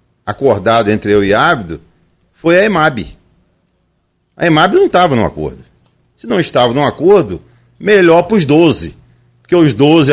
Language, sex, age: Portuguese, male, 50-69